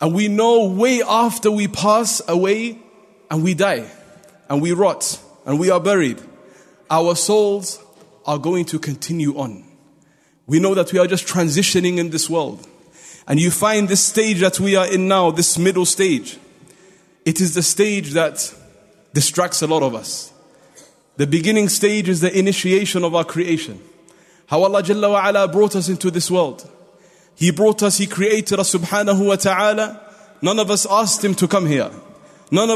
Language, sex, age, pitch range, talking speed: English, male, 30-49, 170-210 Hz, 170 wpm